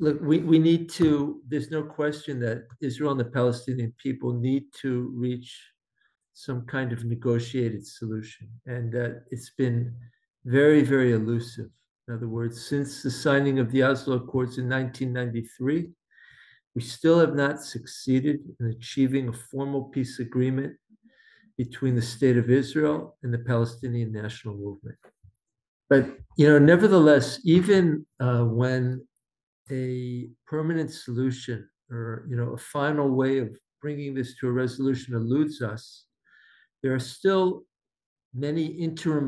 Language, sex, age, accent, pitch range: Korean, male, 50-69, American, 120-150 Hz